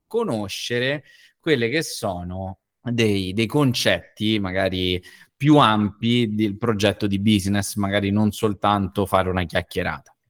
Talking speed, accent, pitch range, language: 115 wpm, native, 100-135 Hz, Italian